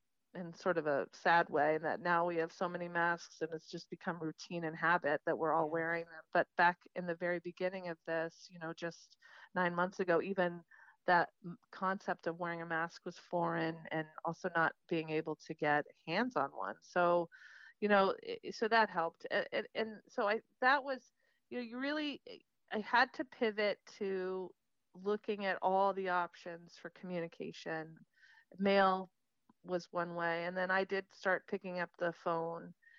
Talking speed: 180 wpm